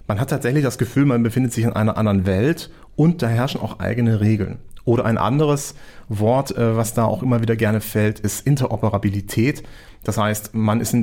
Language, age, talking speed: German, 40-59, 195 wpm